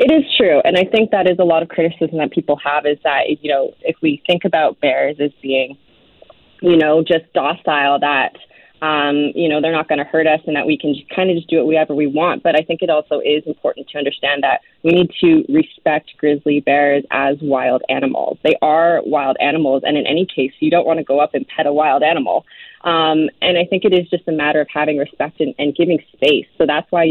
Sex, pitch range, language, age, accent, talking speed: female, 145-165 Hz, English, 20-39, American, 240 wpm